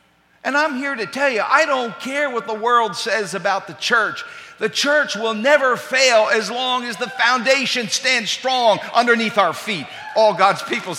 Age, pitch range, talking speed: 50-69, 175-225 Hz, 185 wpm